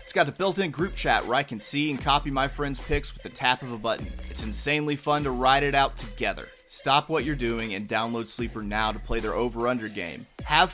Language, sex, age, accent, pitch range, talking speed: English, male, 30-49, American, 125-155 Hz, 240 wpm